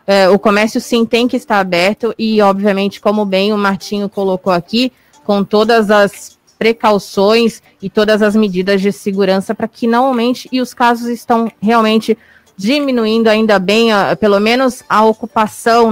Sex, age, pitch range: female, 20-39, 200-240 Hz